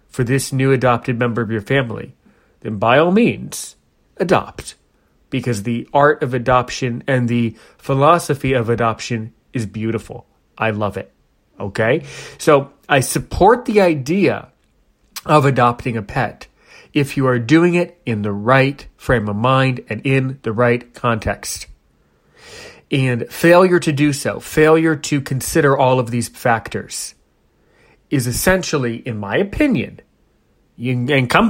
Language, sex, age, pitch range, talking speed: English, male, 30-49, 115-145 Hz, 145 wpm